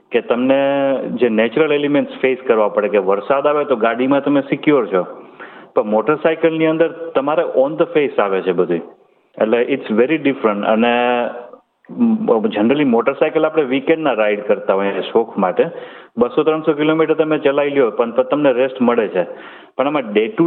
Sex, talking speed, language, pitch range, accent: male, 170 wpm, Gujarati, 125-155 Hz, native